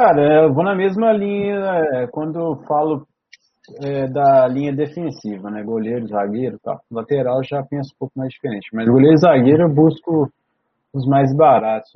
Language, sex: Portuguese, male